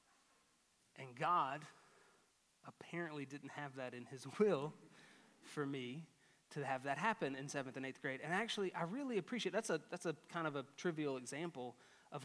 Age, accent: 30-49, American